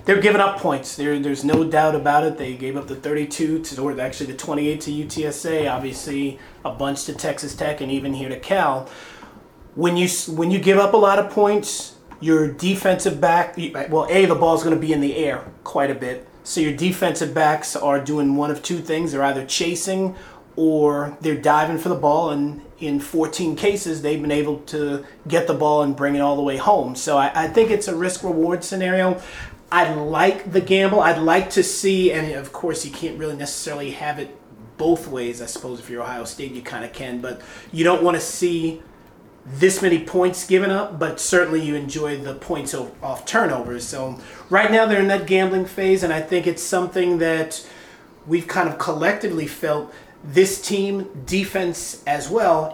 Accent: American